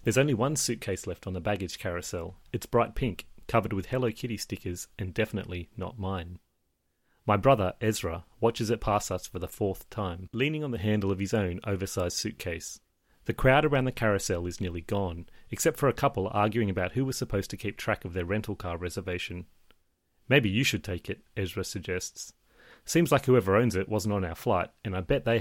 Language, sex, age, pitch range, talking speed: English, male, 30-49, 95-120 Hz, 205 wpm